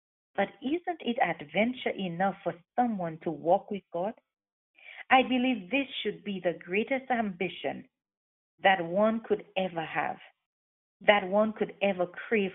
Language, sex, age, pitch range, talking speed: English, female, 40-59, 180-240 Hz, 140 wpm